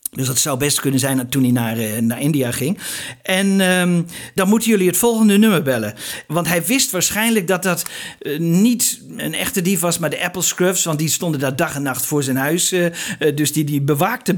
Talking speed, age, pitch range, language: 215 wpm, 50-69, 150-200 Hz, Dutch